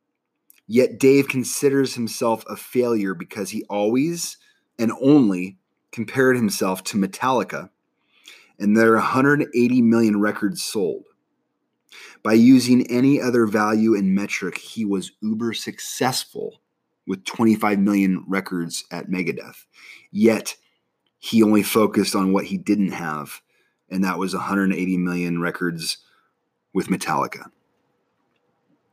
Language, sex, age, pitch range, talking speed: English, male, 30-49, 100-120 Hz, 115 wpm